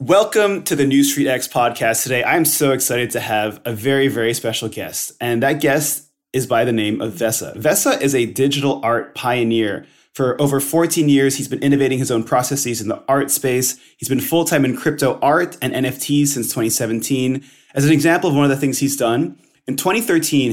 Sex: male